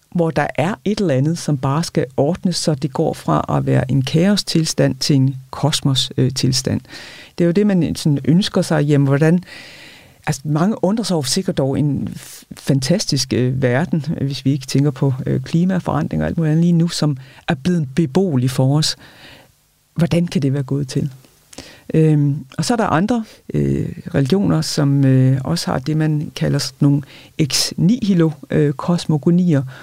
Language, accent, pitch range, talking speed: Danish, native, 135-170 Hz, 165 wpm